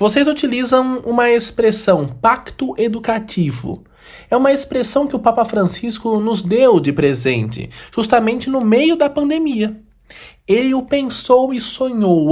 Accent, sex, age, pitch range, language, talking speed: Brazilian, male, 20-39, 190-255 Hz, Portuguese, 130 wpm